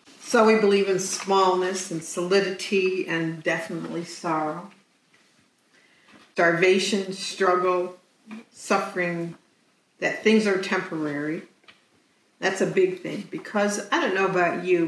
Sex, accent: female, American